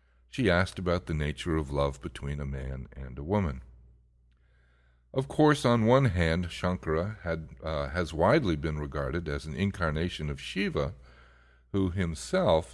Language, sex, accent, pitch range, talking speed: English, male, American, 65-90 Hz, 145 wpm